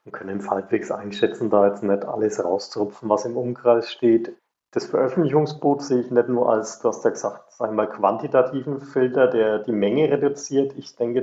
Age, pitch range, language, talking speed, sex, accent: 40-59, 110-130 Hz, German, 180 wpm, male, German